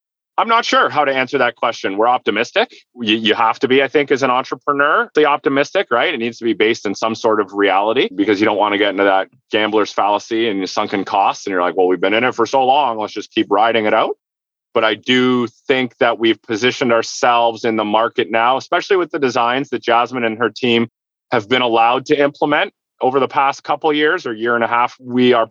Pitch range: 115-140 Hz